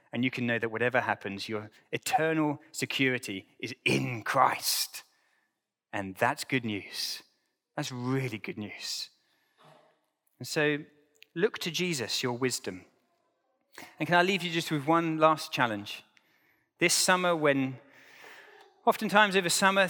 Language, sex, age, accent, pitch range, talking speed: English, male, 30-49, British, 115-165 Hz, 135 wpm